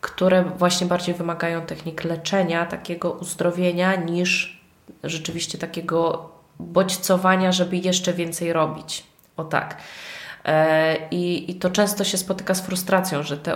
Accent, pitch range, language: native, 165-195 Hz, Polish